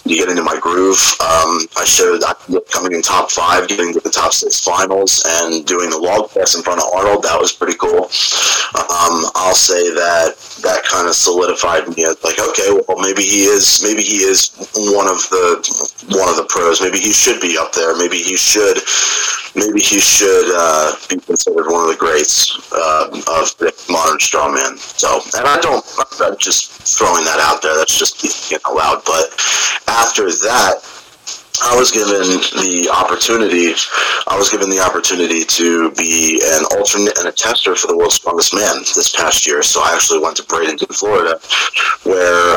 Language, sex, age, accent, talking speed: English, male, 30-49, American, 185 wpm